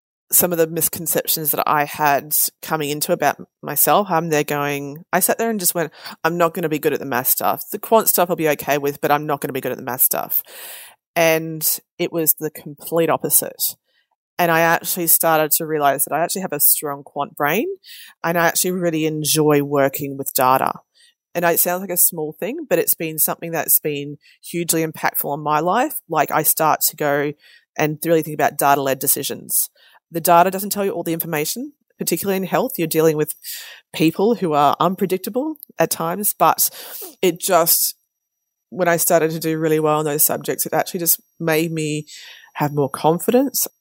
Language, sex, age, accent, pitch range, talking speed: English, female, 30-49, Australian, 155-190 Hz, 200 wpm